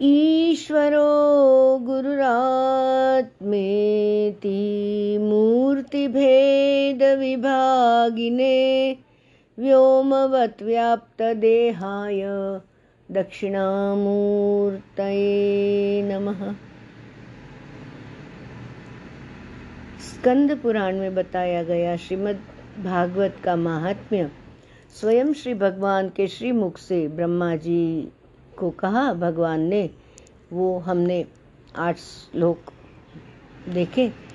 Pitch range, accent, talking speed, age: 195-260 Hz, native, 60 wpm, 50-69